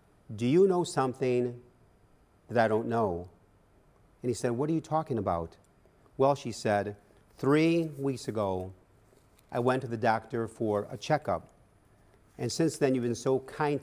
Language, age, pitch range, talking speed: English, 50-69, 105-130 Hz, 160 wpm